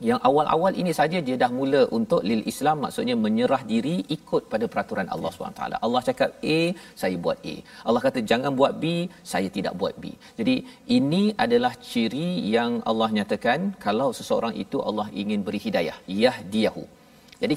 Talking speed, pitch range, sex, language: 170 wpm, 155-250 Hz, male, Malayalam